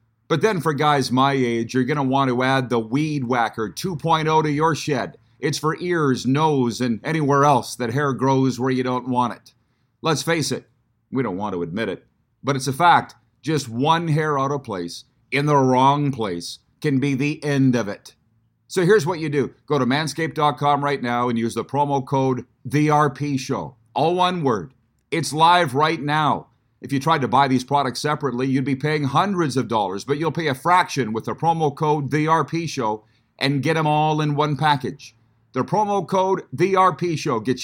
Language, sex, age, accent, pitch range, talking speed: English, male, 40-59, American, 125-155 Hz, 195 wpm